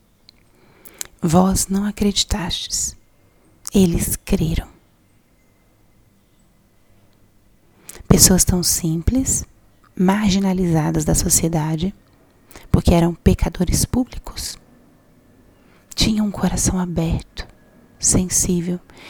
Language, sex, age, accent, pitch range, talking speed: Portuguese, female, 30-49, Brazilian, 115-185 Hz, 65 wpm